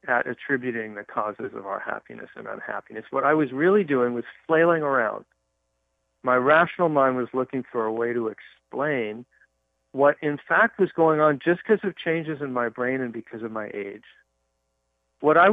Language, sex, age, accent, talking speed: English, male, 40-59, American, 180 wpm